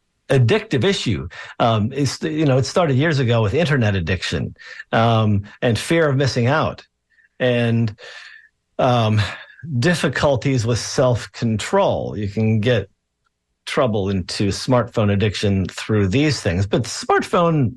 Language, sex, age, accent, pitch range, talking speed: English, male, 50-69, American, 110-140 Hz, 120 wpm